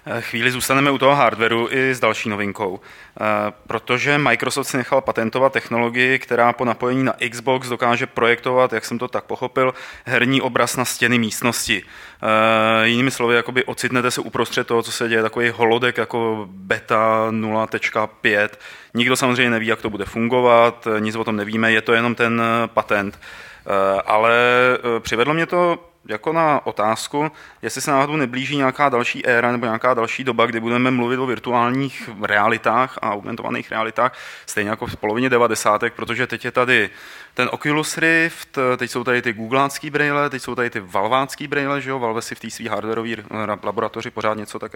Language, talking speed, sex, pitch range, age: Czech, 170 wpm, male, 110-130 Hz, 20-39